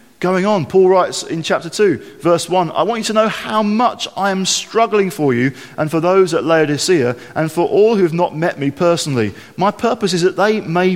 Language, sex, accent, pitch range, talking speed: English, male, British, 120-175 Hz, 225 wpm